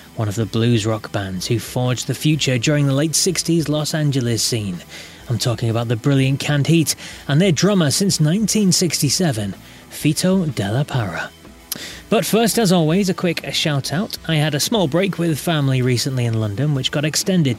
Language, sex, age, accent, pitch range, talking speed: English, male, 30-49, British, 120-160 Hz, 175 wpm